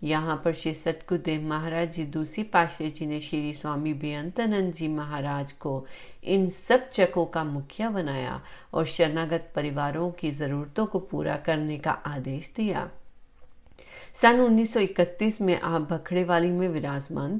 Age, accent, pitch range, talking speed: 40-59, native, 150-185 Hz, 140 wpm